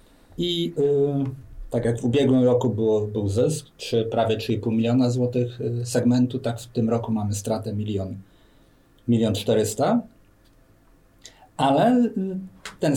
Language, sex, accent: Polish, male, native